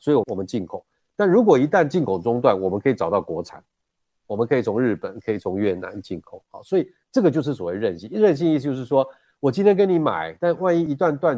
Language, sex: Chinese, male